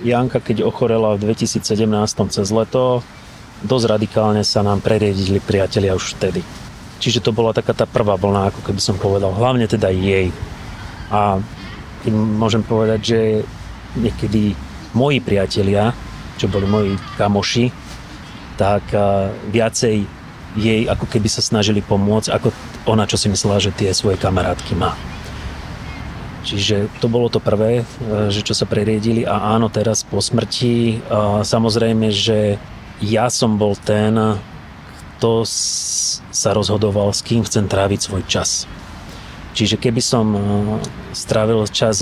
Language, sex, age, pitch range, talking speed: Slovak, male, 30-49, 100-115 Hz, 135 wpm